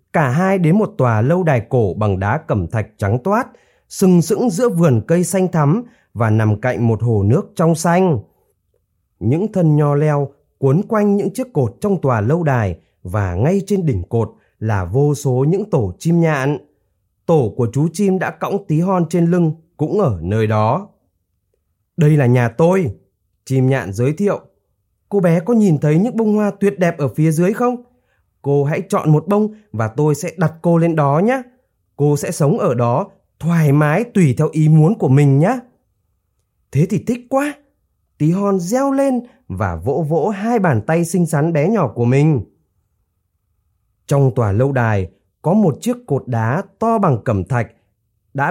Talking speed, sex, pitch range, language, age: 185 wpm, male, 115-185 Hz, Vietnamese, 20-39